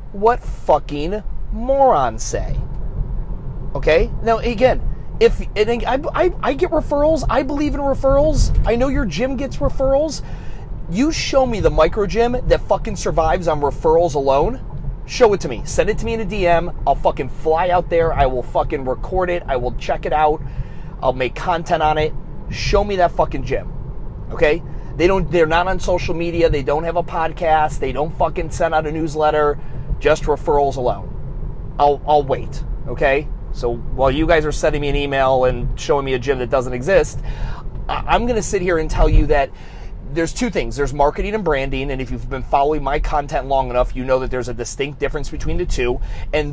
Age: 30-49